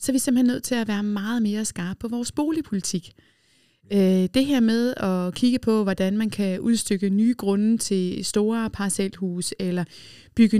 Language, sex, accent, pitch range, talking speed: Danish, female, native, 195-235 Hz, 175 wpm